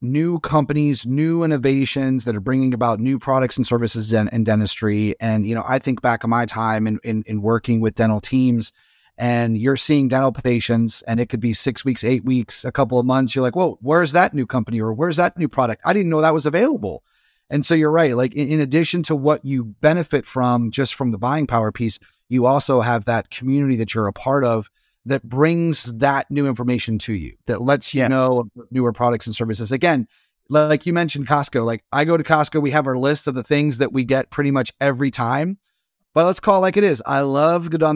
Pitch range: 120-150 Hz